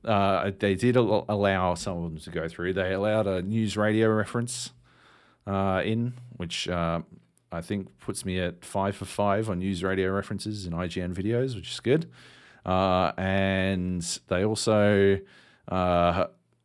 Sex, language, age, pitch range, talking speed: male, English, 40-59, 85-110 Hz, 160 wpm